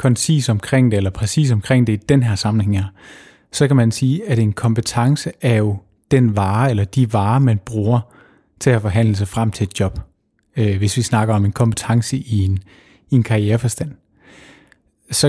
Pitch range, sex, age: 105-135 Hz, male, 30-49